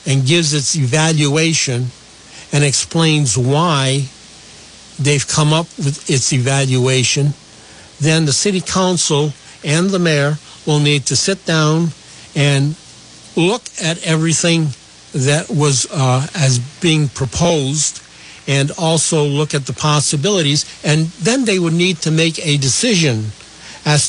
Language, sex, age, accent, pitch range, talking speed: English, male, 60-79, American, 135-160 Hz, 125 wpm